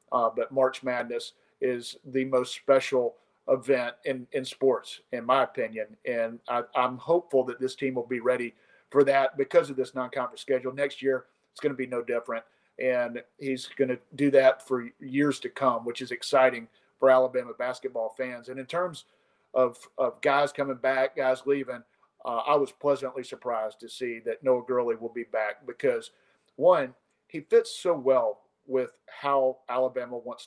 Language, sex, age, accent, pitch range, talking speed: English, male, 50-69, American, 125-145 Hz, 175 wpm